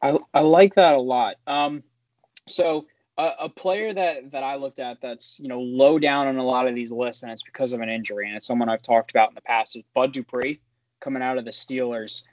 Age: 20-39